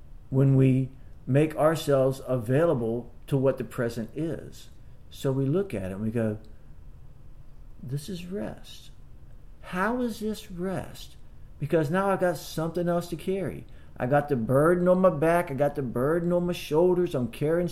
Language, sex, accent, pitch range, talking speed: English, male, American, 130-175 Hz, 165 wpm